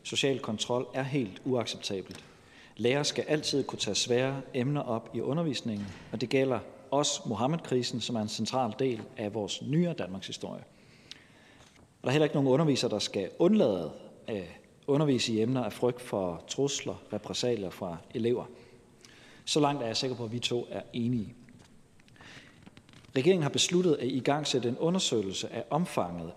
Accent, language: native, Danish